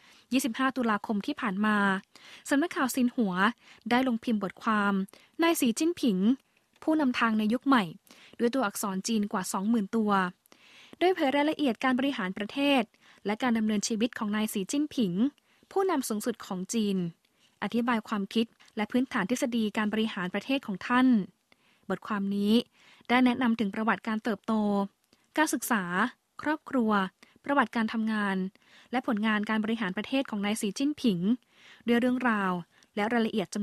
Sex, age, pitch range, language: female, 20-39, 210-255 Hz, Thai